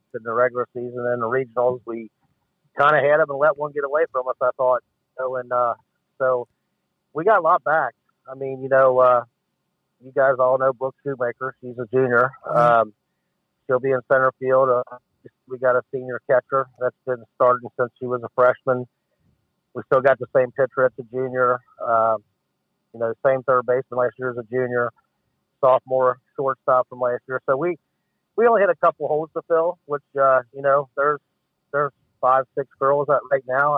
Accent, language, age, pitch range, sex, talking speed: American, English, 50-69, 125-135 Hz, male, 200 wpm